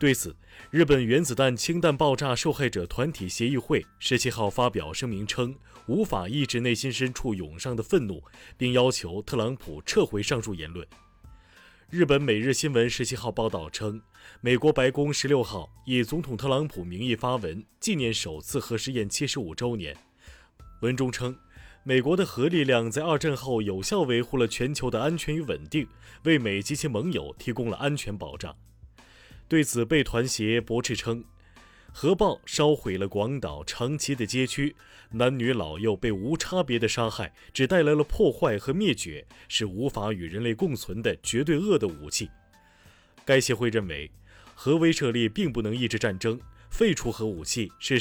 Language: Chinese